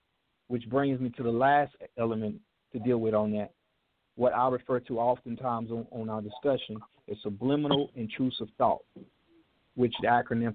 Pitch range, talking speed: 115-150 Hz, 160 wpm